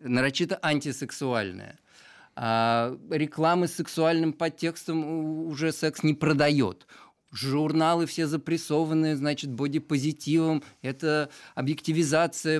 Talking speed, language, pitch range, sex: 90 wpm, Russian, 120-160 Hz, male